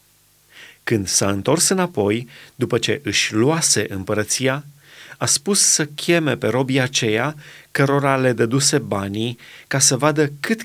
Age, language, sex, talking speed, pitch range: 30-49, Romanian, male, 135 wpm, 115-155 Hz